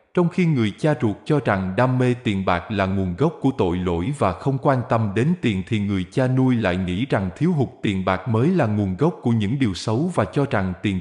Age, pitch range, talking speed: 20-39, 100-145 Hz, 250 wpm